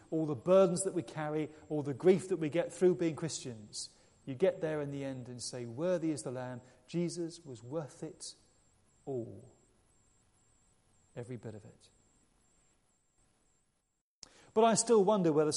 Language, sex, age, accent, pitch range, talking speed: English, male, 40-59, British, 125-165 Hz, 160 wpm